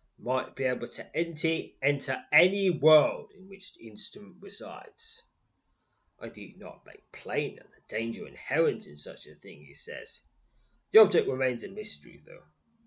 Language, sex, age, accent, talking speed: English, male, 20-39, British, 155 wpm